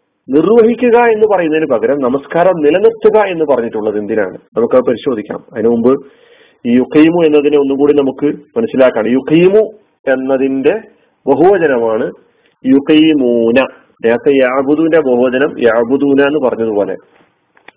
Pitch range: 125-170 Hz